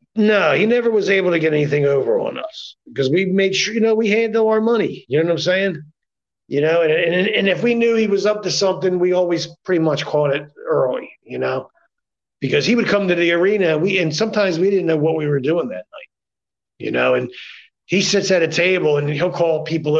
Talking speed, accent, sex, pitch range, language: 235 wpm, American, male, 150-195 Hz, English